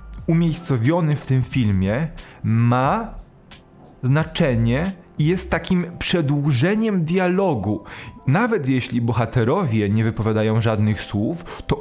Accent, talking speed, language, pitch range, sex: native, 95 wpm, Polish, 115-165 Hz, male